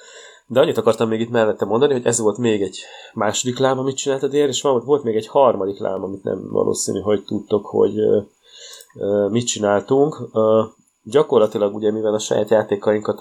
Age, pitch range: 30-49, 95-125 Hz